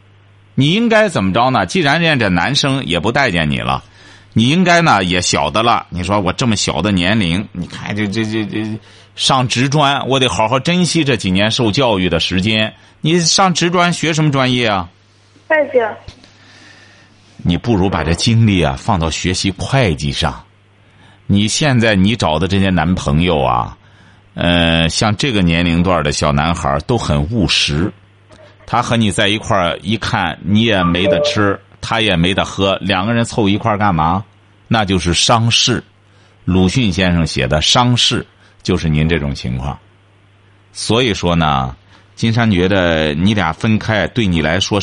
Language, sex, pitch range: Chinese, male, 90-115 Hz